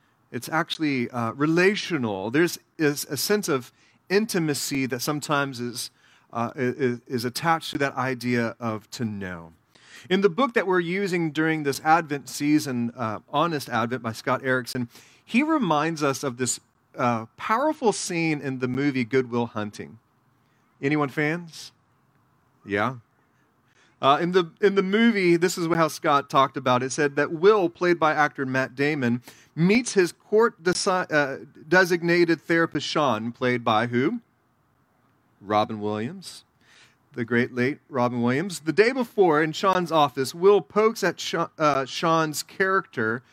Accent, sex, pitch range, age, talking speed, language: American, male, 125-170 Hz, 30-49, 150 wpm, English